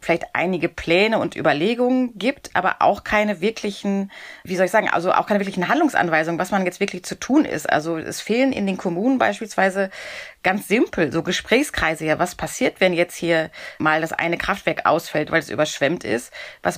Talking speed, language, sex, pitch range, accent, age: 190 wpm, German, female, 170-205 Hz, German, 30-49